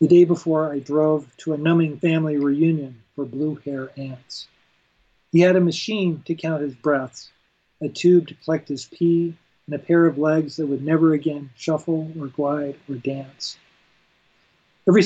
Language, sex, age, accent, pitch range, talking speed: English, male, 40-59, American, 140-175 Hz, 165 wpm